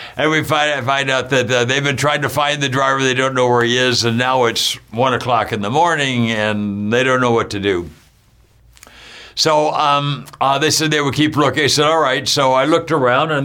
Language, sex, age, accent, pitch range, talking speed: English, male, 60-79, American, 120-155 Hz, 240 wpm